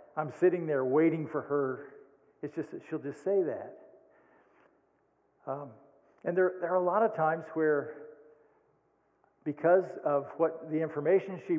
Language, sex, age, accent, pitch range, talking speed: English, male, 50-69, American, 145-210 Hz, 150 wpm